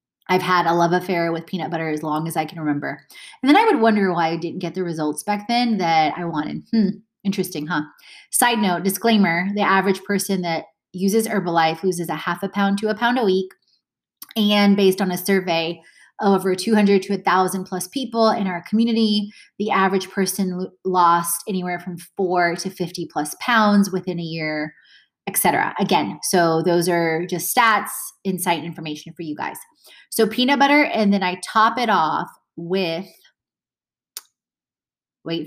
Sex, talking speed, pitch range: female, 180 wpm, 175-220 Hz